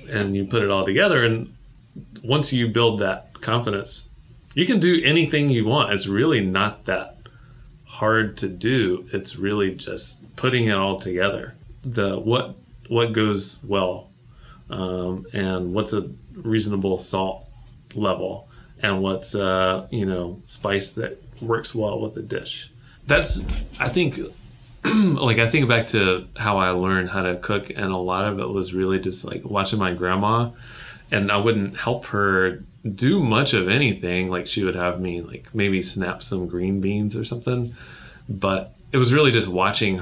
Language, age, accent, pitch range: English, 30-49, American, 95-120 Hz